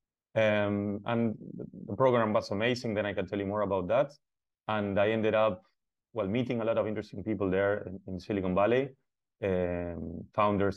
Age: 30-49